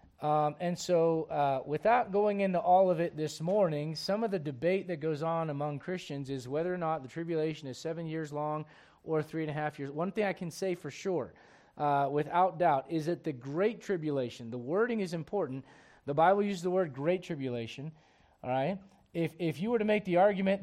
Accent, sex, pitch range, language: American, male, 150-190 Hz, English